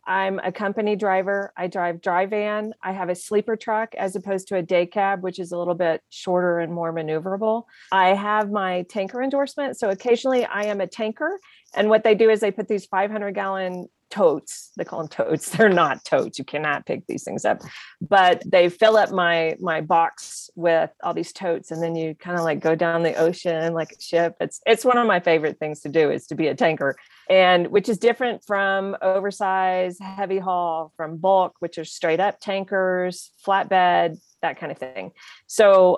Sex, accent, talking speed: female, American, 205 wpm